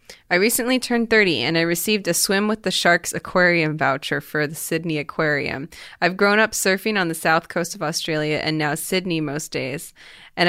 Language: English